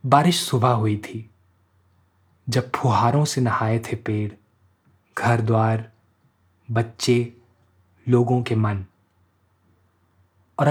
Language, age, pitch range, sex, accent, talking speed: Hindi, 20-39, 105-130 Hz, male, native, 95 wpm